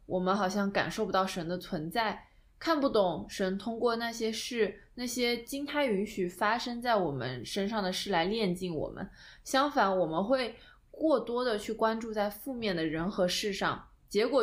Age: 20-39